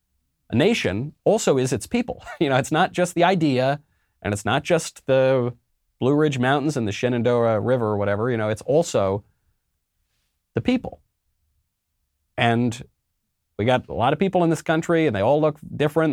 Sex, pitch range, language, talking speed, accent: male, 100-135 Hz, English, 180 wpm, American